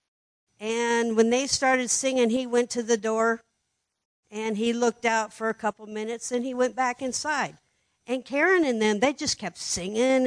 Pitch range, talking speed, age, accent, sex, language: 180-245 Hz, 180 wpm, 60-79, American, female, English